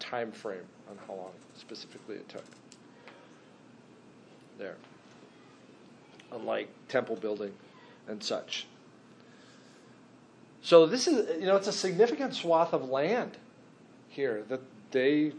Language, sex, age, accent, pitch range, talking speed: English, male, 40-59, American, 140-160 Hz, 110 wpm